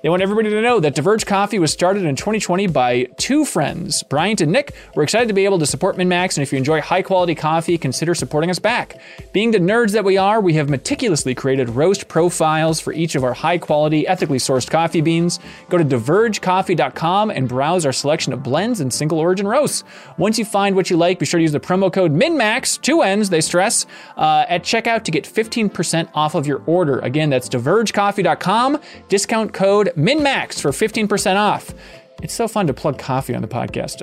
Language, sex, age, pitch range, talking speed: English, male, 20-39, 150-205 Hz, 205 wpm